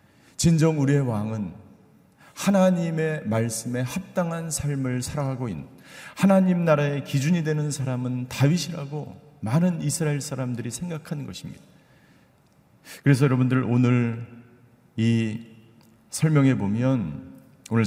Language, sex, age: Korean, male, 40-59